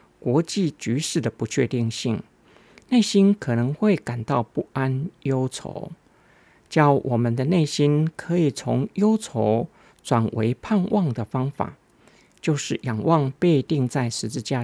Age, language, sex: 50-69, Chinese, male